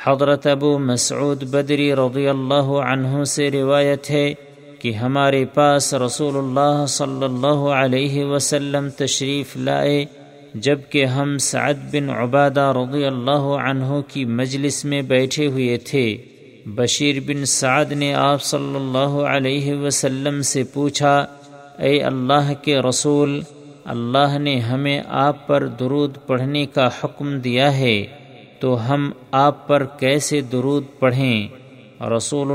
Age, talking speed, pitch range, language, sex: 50-69, 125 wpm, 130-145 Hz, Urdu, male